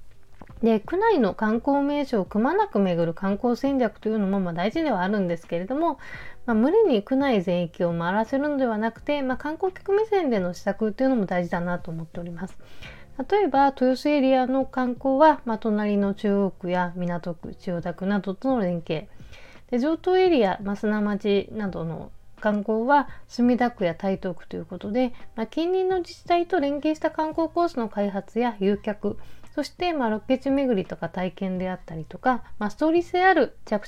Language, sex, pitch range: Japanese, female, 185-275 Hz